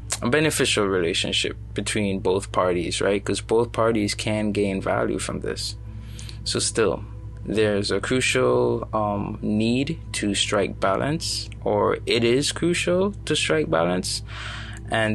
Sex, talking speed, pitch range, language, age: male, 130 wpm, 105-110 Hz, English, 20-39